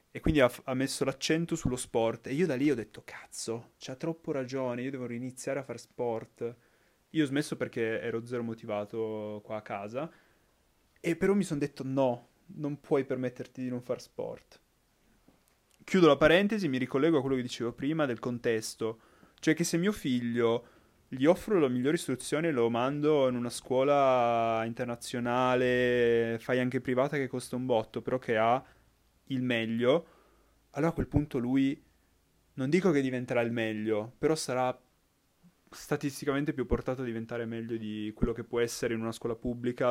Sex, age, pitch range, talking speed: male, 20-39, 115-140 Hz, 175 wpm